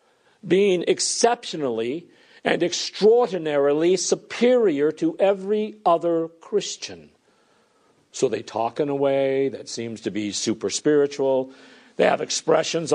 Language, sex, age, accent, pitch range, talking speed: English, male, 50-69, American, 150-215 Hz, 110 wpm